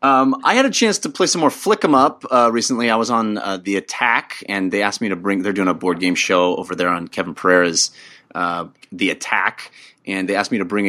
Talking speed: 255 wpm